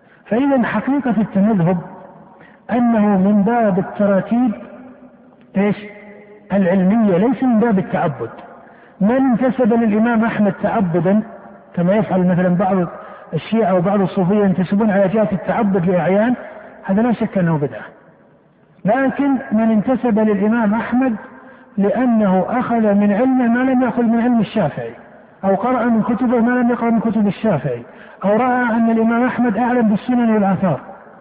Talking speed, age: 130 wpm, 50-69